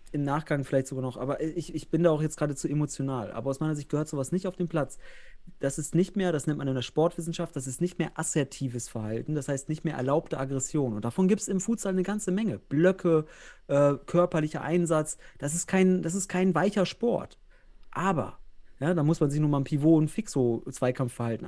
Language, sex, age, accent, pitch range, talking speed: German, male, 30-49, German, 135-170 Hz, 225 wpm